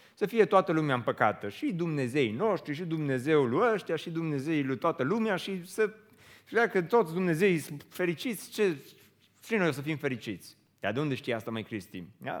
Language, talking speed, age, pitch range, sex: Romanian, 190 wpm, 30-49, 150-215 Hz, male